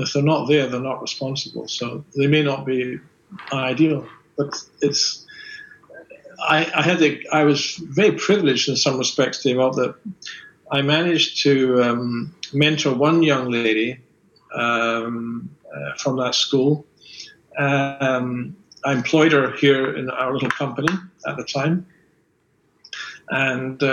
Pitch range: 130-165 Hz